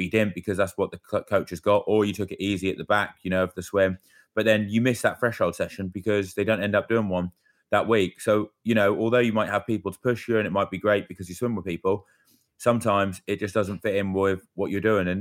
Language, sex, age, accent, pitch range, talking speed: English, male, 20-39, British, 95-105 Hz, 275 wpm